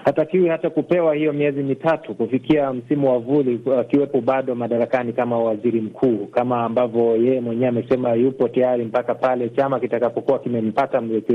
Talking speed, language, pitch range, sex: 160 wpm, Swahili, 130-155 Hz, male